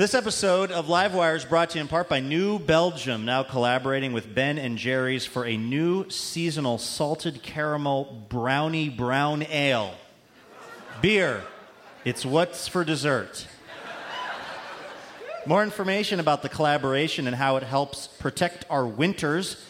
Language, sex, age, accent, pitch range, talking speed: English, male, 30-49, American, 130-170 Hz, 135 wpm